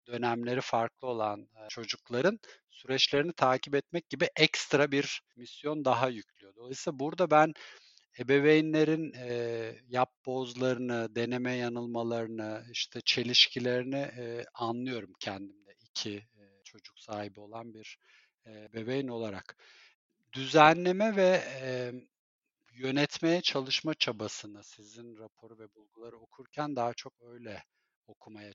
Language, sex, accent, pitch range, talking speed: Turkish, male, native, 115-135 Hz, 95 wpm